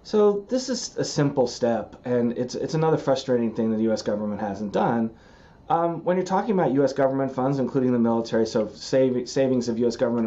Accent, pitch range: American, 115-145 Hz